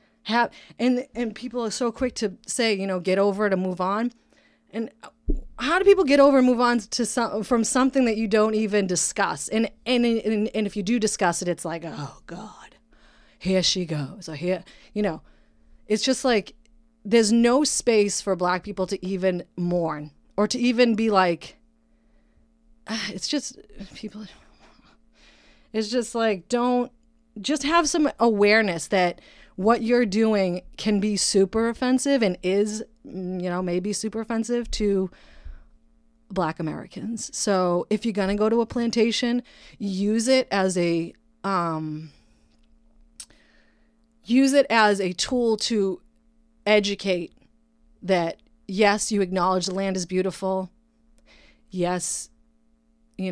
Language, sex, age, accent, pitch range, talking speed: English, female, 30-49, American, 185-230 Hz, 150 wpm